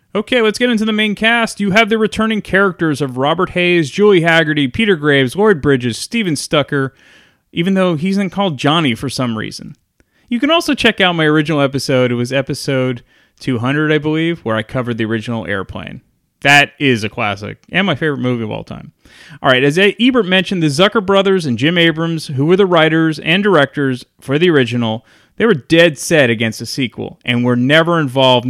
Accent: American